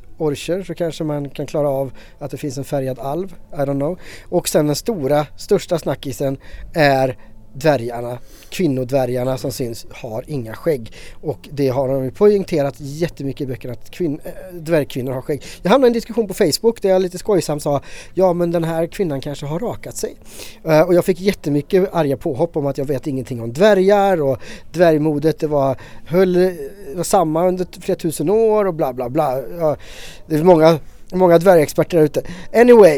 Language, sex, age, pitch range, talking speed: English, male, 30-49, 140-185 Hz, 185 wpm